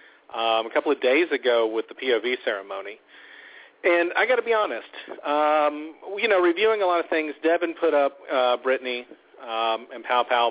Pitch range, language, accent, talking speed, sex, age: 120-155 Hz, English, American, 185 wpm, male, 40-59